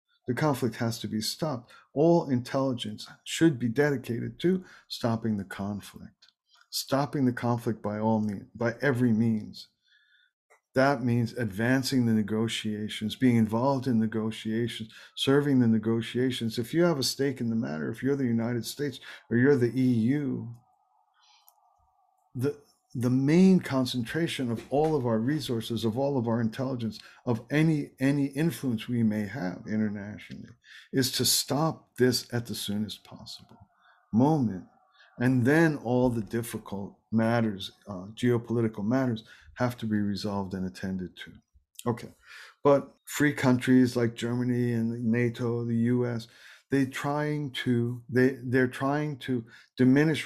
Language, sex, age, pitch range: English, male, 50-69, 110-130 Hz